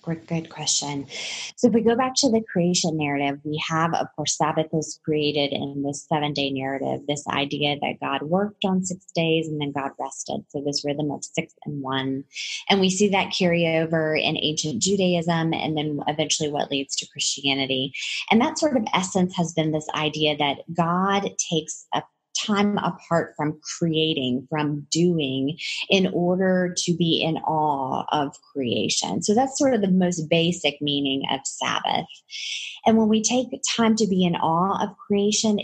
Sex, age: female, 20-39